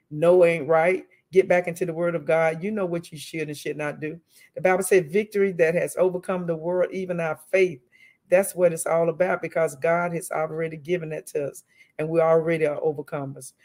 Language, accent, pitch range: English, American, 155-195 Hz